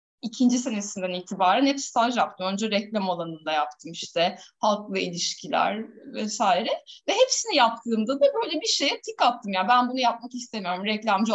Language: Turkish